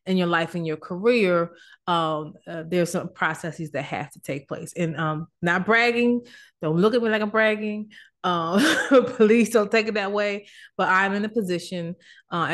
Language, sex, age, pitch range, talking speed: English, female, 30-49, 165-215 Hz, 190 wpm